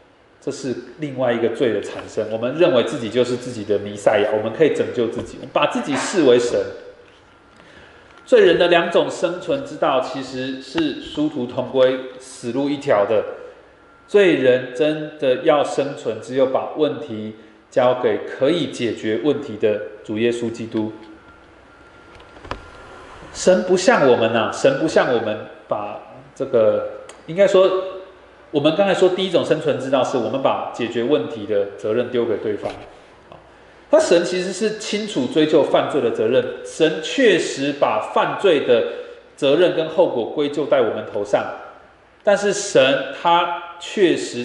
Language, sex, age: Chinese, male, 30-49